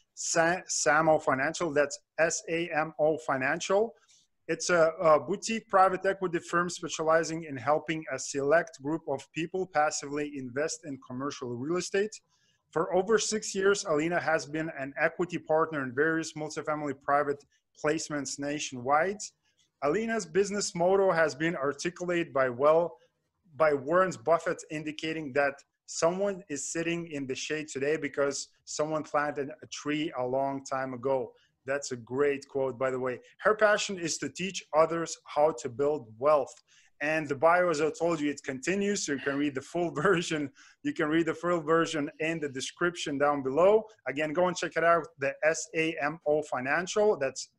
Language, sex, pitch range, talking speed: English, male, 145-170 Hz, 160 wpm